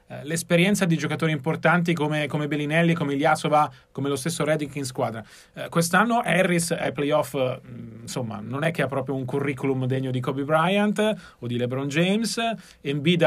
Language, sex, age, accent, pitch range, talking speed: Italian, male, 30-49, native, 145-185 Hz, 175 wpm